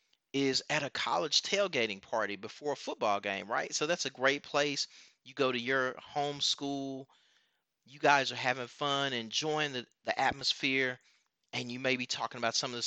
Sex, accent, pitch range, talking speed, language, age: male, American, 115-140 Hz, 185 wpm, English, 30-49